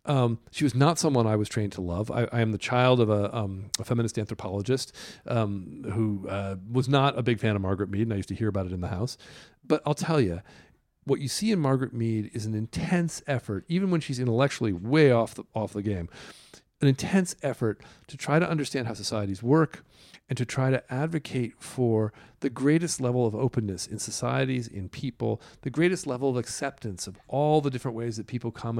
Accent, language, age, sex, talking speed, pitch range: American, English, 40-59, male, 215 wpm, 110-150 Hz